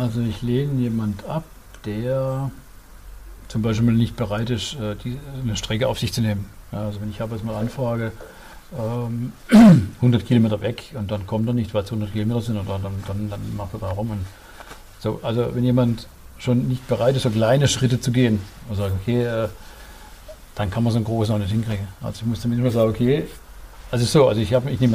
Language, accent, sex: German, German, male